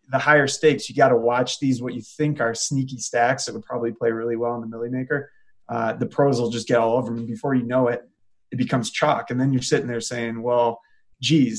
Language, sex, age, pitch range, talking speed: English, male, 20-39, 115-140 Hz, 255 wpm